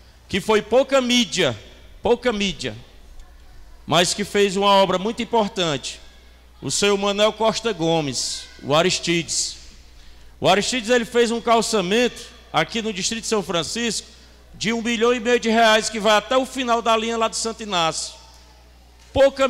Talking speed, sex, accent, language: 155 wpm, male, Brazilian, Portuguese